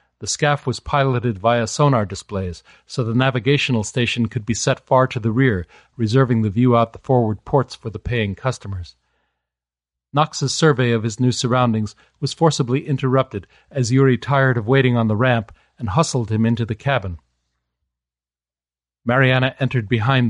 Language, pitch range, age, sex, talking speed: English, 100-135 Hz, 40-59, male, 165 wpm